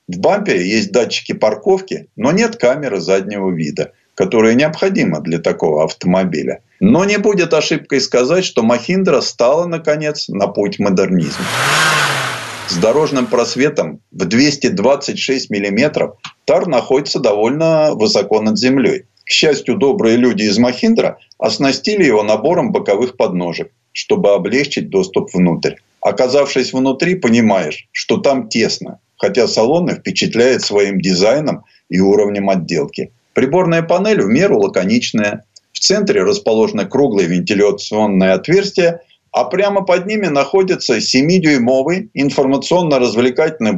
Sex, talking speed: male, 120 wpm